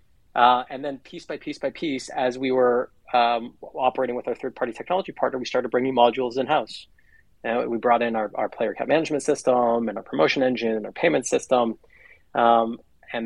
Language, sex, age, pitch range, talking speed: English, male, 30-49, 115-130 Hz, 200 wpm